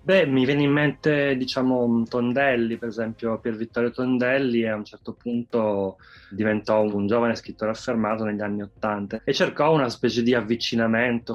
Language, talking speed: Italian, 160 wpm